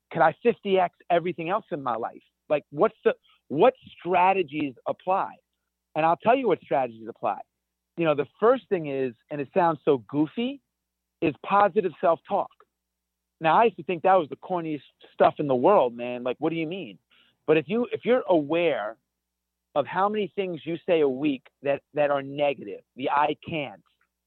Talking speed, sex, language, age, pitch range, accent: 185 wpm, male, English, 40-59, 135-185 Hz, American